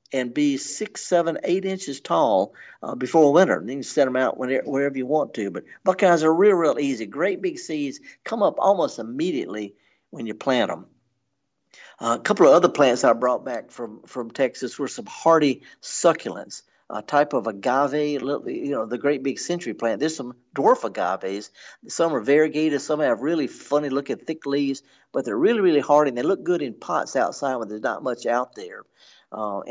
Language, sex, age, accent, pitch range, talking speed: English, male, 50-69, American, 120-155 Hz, 195 wpm